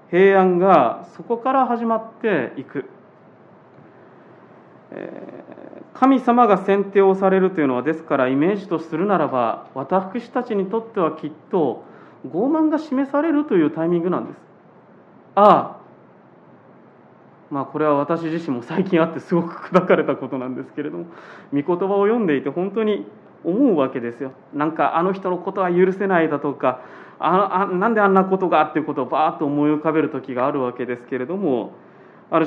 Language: Japanese